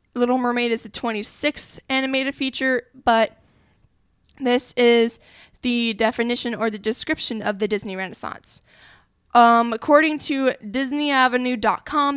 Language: English